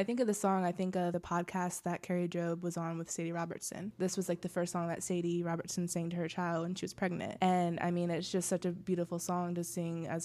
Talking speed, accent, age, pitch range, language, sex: 275 wpm, American, 20-39, 170-185 Hz, English, female